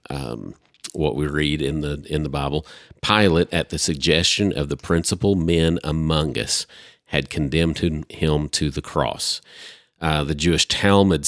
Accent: American